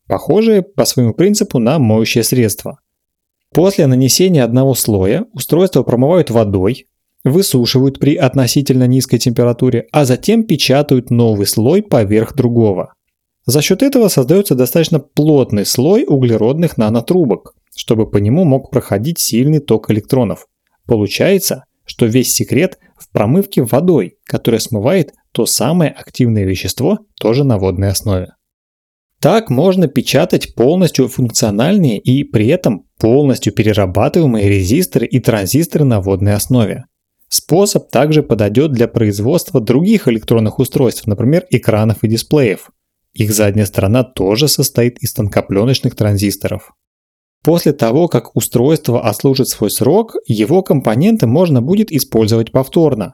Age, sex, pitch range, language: 30-49, male, 110-145 Hz, Russian